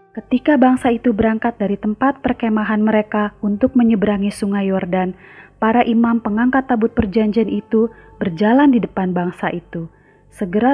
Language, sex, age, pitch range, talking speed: Indonesian, female, 30-49, 195-235 Hz, 135 wpm